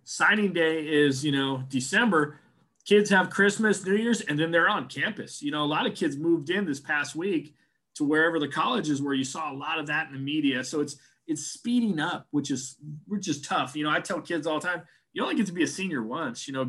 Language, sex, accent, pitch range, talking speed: English, male, American, 140-185 Hz, 250 wpm